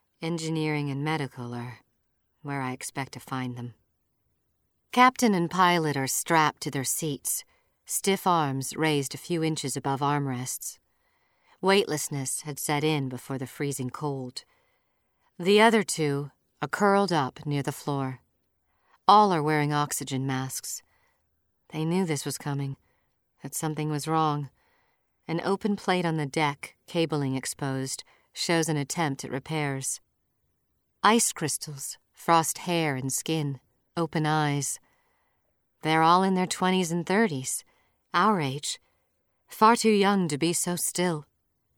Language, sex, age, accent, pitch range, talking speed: English, female, 40-59, American, 135-175 Hz, 135 wpm